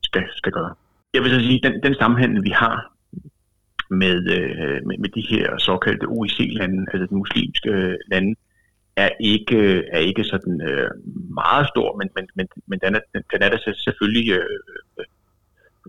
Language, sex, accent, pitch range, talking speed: Danish, male, native, 95-115 Hz, 175 wpm